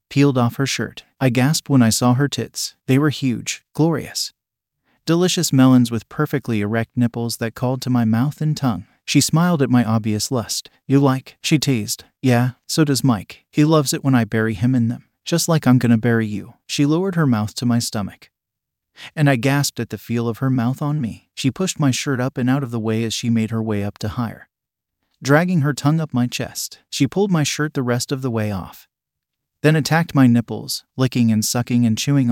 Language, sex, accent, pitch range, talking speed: English, male, American, 115-140 Hz, 220 wpm